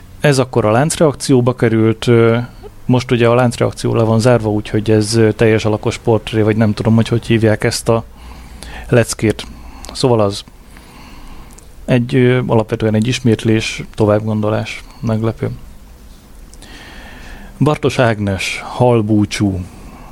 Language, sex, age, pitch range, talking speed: Hungarian, male, 30-49, 105-125 Hz, 110 wpm